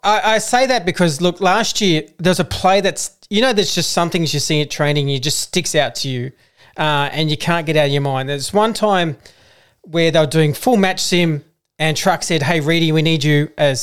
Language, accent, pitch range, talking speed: English, Australian, 145-185 Hz, 245 wpm